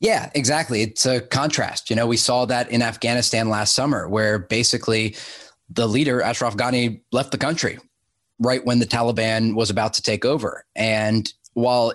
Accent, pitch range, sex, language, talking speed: American, 110-130 Hz, male, English, 170 wpm